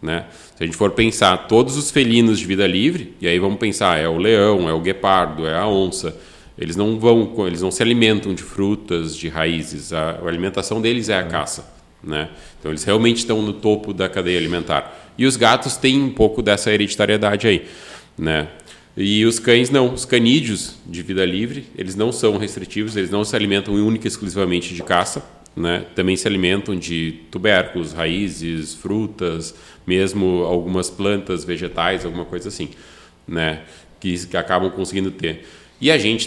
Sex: male